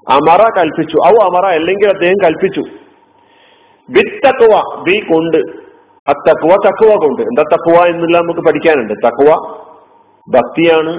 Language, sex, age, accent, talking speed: Malayalam, male, 50-69, native, 110 wpm